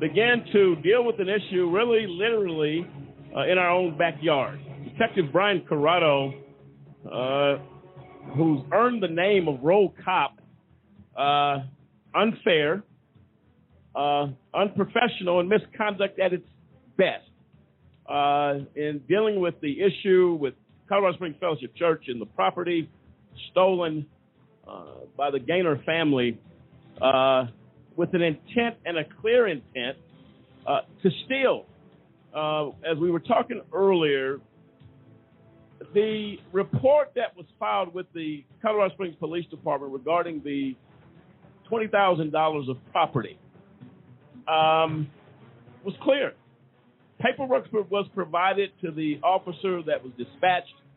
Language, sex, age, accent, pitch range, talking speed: English, male, 50-69, American, 145-200 Hz, 115 wpm